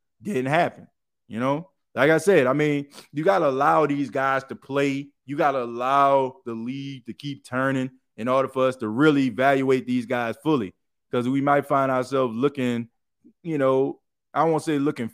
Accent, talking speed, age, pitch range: American, 180 wpm, 20-39, 120-140 Hz